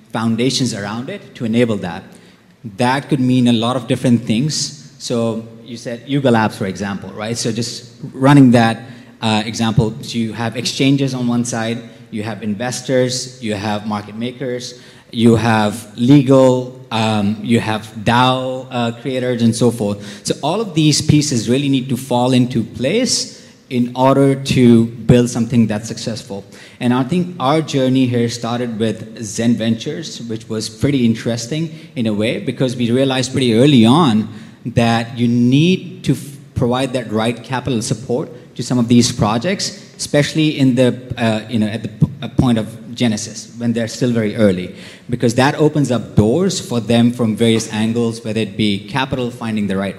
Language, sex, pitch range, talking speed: English, male, 115-130 Hz, 170 wpm